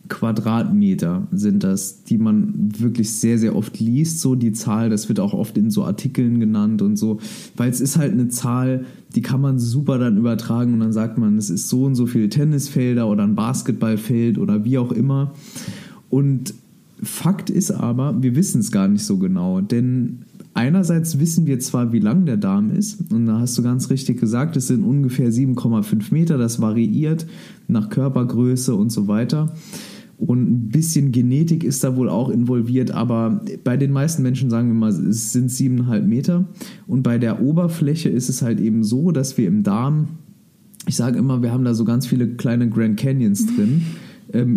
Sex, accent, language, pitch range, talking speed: male, German, German, 120-165 Hz, 190 wpm